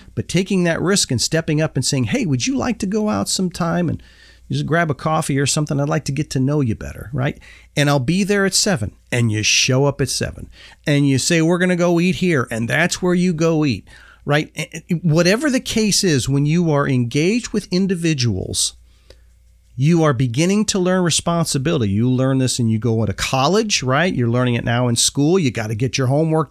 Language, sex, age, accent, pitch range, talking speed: English, male, 40-59, American, 125-170 Hz, 220 wpm